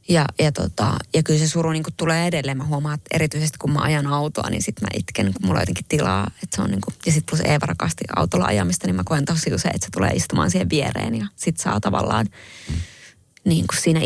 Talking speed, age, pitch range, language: 235 wpm, 20-39, 115-160 Hz, Finnish